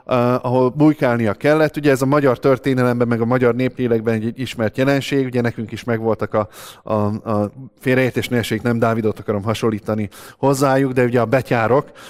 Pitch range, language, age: 110-145 Hz, Hungarian, 20-39